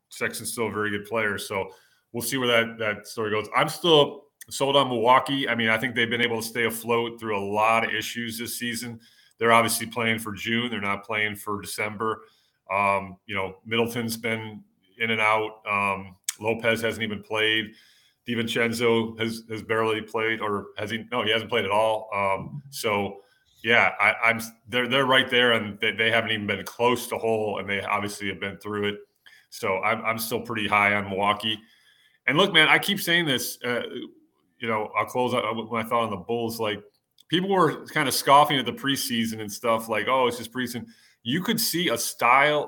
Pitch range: 105-125 Hz